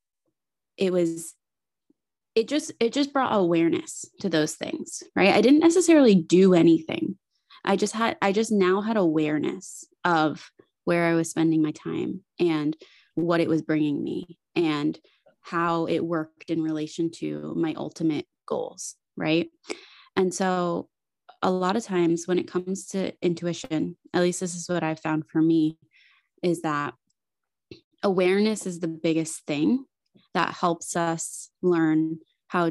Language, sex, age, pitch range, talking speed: English, female, 20-39, 165-225 Hz, 150 wpm